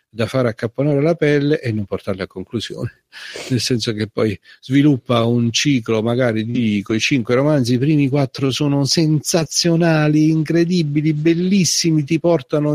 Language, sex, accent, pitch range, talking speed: Italian, male, native, 95-145 Hz, 145 wpm